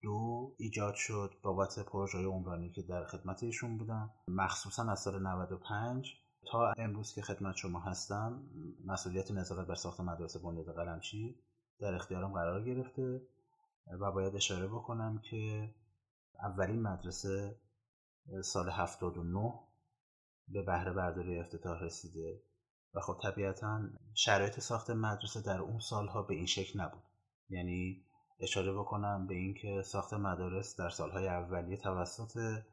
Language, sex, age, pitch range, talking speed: Persian, male, 30-49, 90-110 Hz, 135 wpm